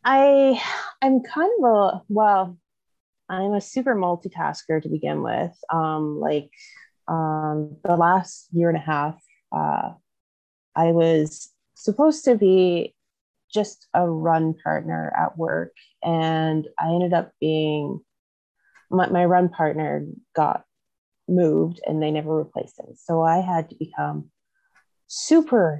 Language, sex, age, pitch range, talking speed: English, female, 30-49, 155-185 Hz, 130 wpm